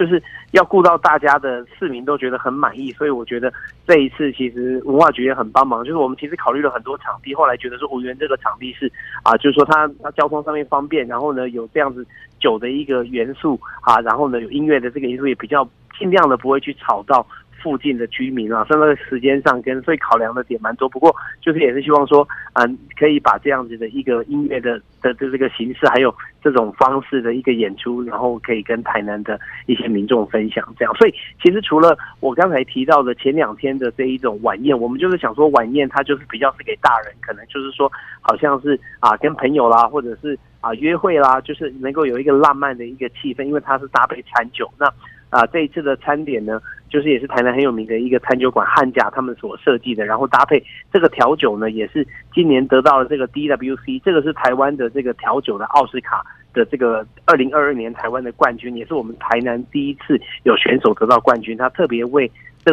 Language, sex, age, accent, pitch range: Chinese, male, 30-49, native, 120-145 Hz